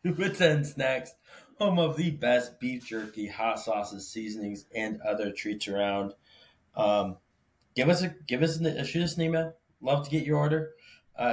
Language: English